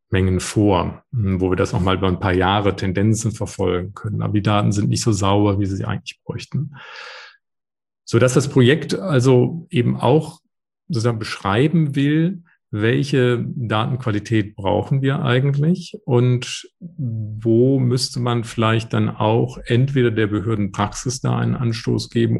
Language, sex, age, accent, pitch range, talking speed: German, male, 40-59, German, 105-125 Hz, 145 wpm